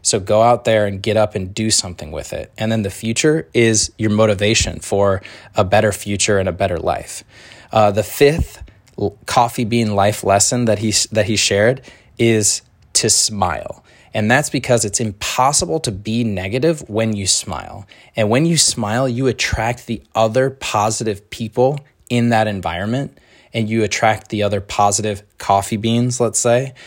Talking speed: 170 wpm